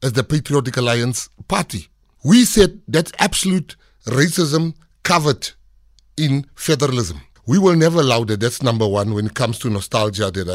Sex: male